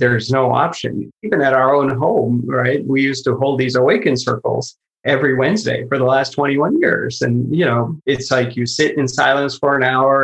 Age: 30-49